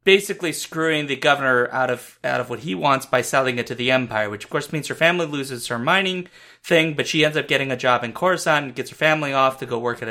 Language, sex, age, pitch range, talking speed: English, male, 30-49, 120-155 Hz, 265 wpm